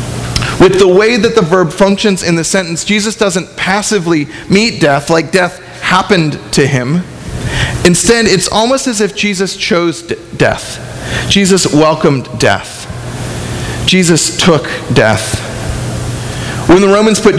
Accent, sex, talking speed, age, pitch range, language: American, male, 130 wpm, 30-49, 155-205 Hz, English